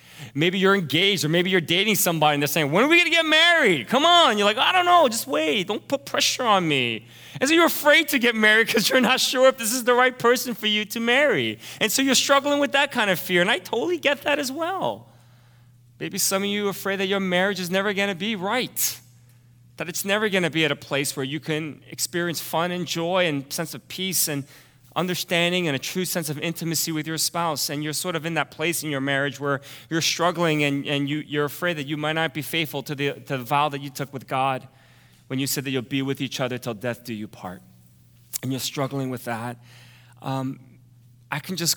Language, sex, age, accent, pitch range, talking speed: English, male, 30-49, American, 135-190 Hz, 245 wpm